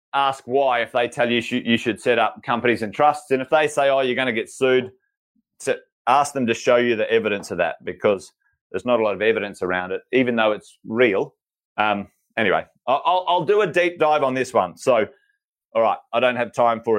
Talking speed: 225 wpm